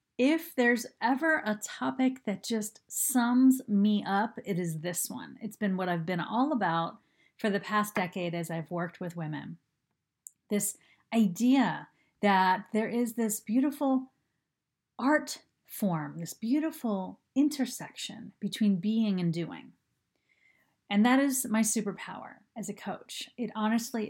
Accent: American